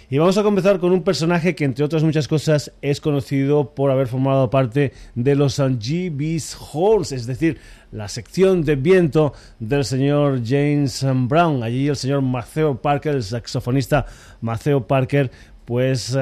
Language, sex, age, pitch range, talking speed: Spanish, male, 30-49, 125-145 Hz, 155 wpm